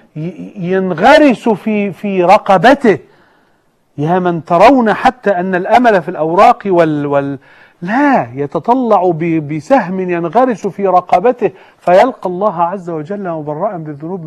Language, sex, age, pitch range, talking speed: Arabic, male, 50-69, 160-210 Hz, 110 wpm